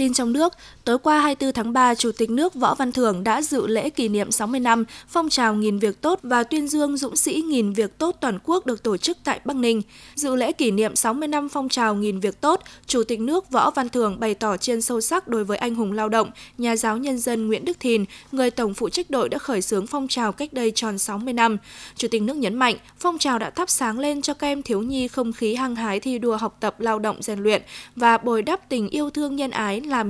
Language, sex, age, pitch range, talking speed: Vietnamese, female, 20-39, 215-270 Hz, 260 wpm